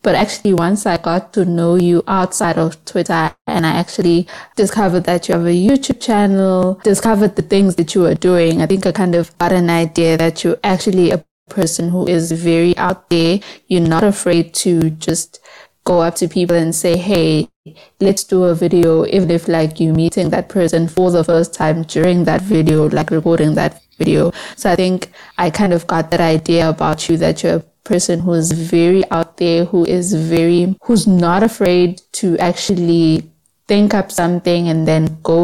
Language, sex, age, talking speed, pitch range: English, female, 20-39, 190 wpm, 170-195 Hz